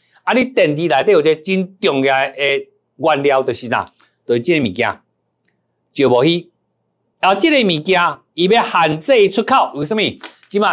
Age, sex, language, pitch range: 50-69, male, Chinese, 140-225 Hz